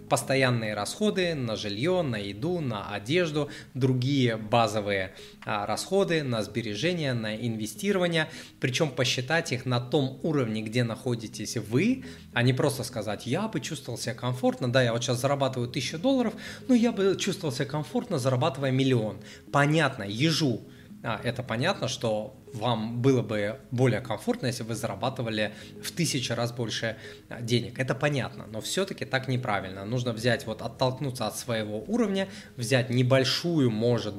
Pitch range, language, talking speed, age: 110-140 Hz, Russian, 145 wpm, 20-39